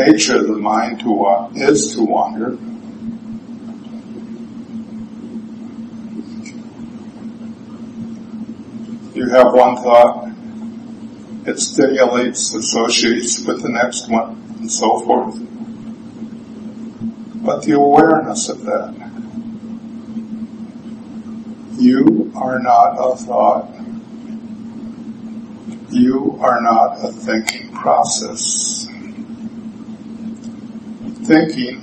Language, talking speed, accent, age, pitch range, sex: English, 75 wpm, American, 60-79, 225-235 Hz, male